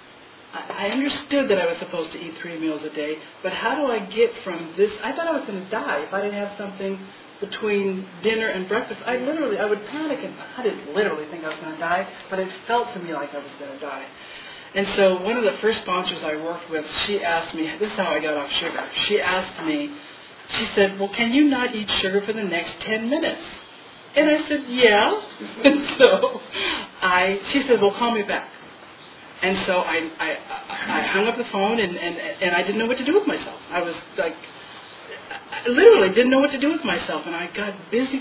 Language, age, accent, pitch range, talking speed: English, 50-69, American, 180-250 Hz, 230 wpm